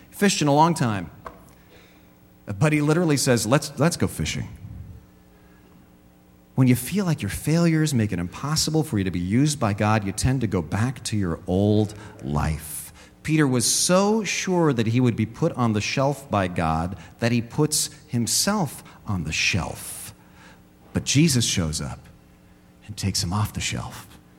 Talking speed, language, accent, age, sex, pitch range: 170 wpm, English, American, 40-59, male, 95-155 Hz